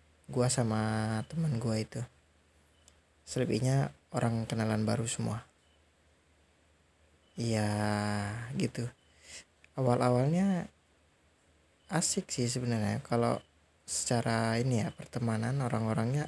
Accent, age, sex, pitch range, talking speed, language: native, 20-39, male, 85-125 Hz, 80 wpm, Indonesian